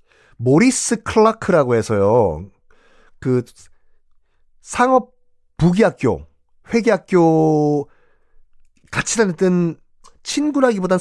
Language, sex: Korean, male